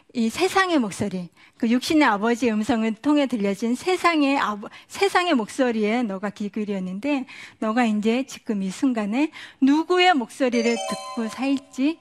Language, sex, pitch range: Korean, female, 215-290 Hz